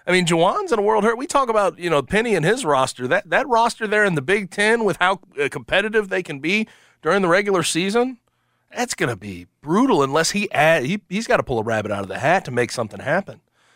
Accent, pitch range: American, 120-200 Hz